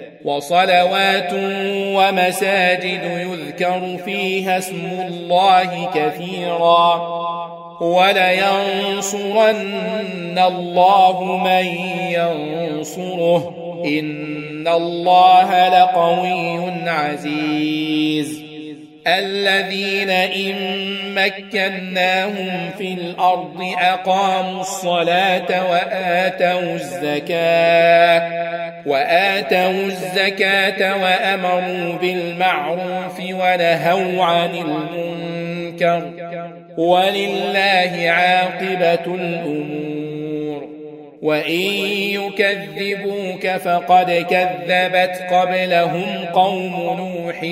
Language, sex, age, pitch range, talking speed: Arabic, male, 40-59, 170-185 Hz, 50 wpm